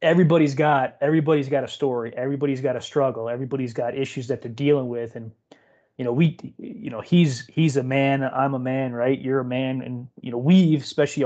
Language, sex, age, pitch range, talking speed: English, male, 30-49, 120-145 Hz, 210 wpm